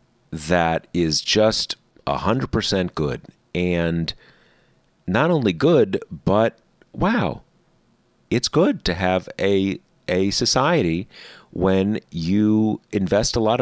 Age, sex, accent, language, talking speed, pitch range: 40-59, male, American, English, 110 wpm, 85-110 Hz